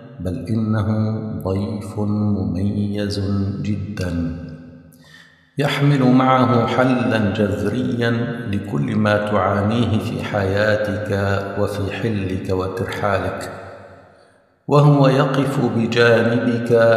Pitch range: 95-125 Hz